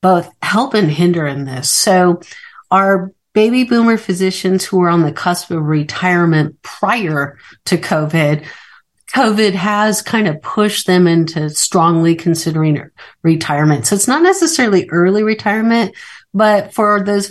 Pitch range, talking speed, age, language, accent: 155-200 Hz, 140 wpm, 50-69, English, American